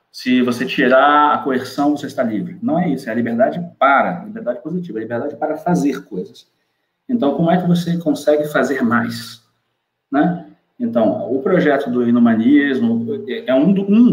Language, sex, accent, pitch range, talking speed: Portuguese, male, Brazilian, 130-195 Hz, 160 wpm